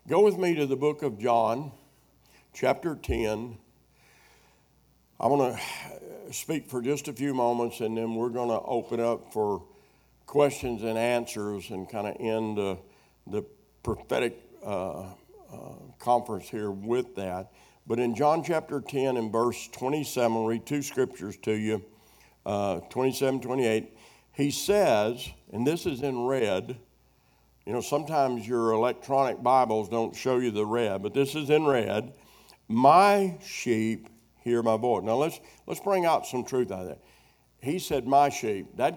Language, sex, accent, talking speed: English, male, American, 160 wpm